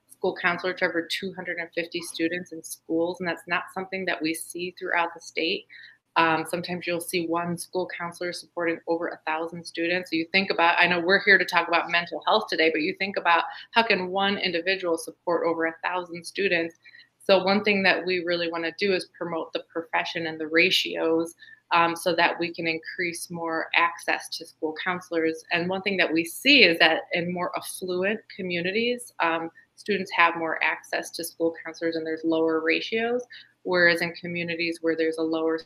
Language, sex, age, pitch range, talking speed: English, female, 30-49, 165-185 Hz, 195 wpm